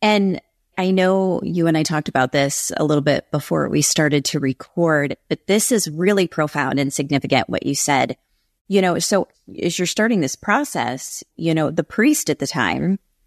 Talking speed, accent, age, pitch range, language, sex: 190 wpm, American, 30-49, 150-195 Hz, English, female